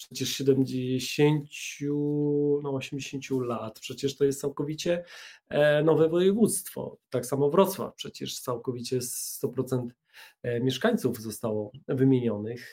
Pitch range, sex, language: 130-160 Hz, male, Polish